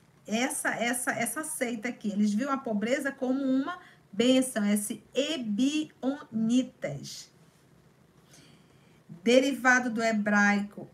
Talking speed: 95 wpm